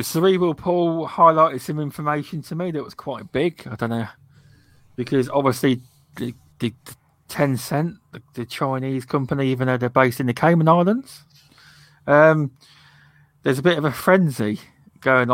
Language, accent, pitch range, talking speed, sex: English, British, 125-150 Hz, 155 wpm, male